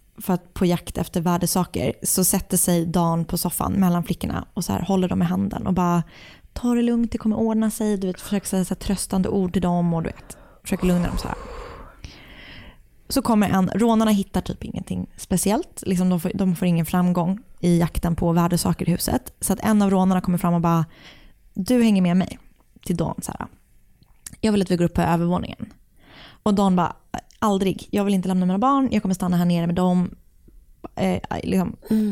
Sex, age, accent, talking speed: female, 20-39, native, 205 wpm